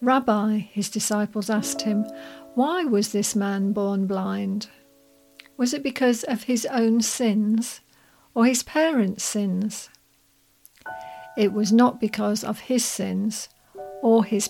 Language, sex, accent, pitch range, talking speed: English, female, British, 200-230 Hz, 130 wpm